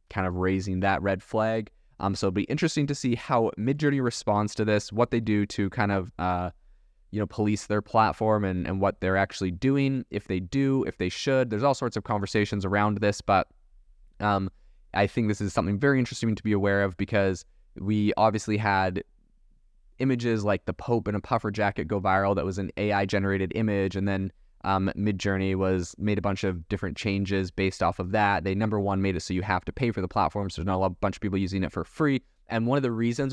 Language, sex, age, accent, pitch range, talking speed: English, male, 20-39, American, 95-120 Hz, 230 wpm